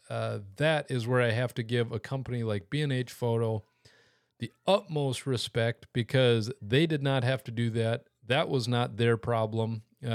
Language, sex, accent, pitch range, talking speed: English, male, American, 115-135 Hz, 175 wpm